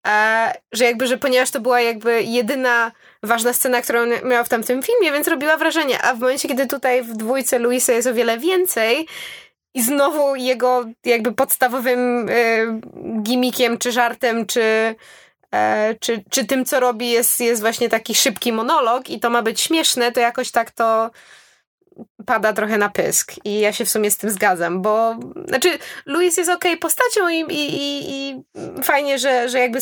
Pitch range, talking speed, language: 220-265 Hz, 180 wpm, Polish